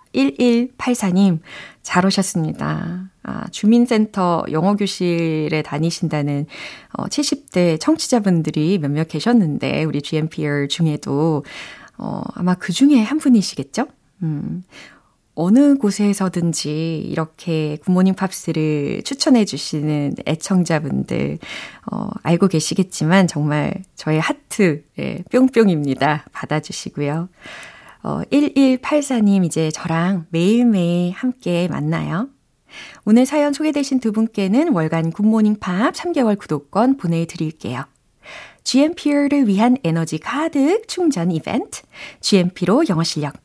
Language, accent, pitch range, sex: Korean, native, 160-245 Hz, female